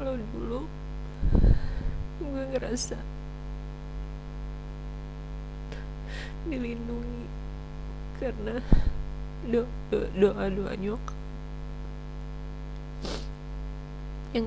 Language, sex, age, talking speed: Indonesian, female, 30-49, 40 wpm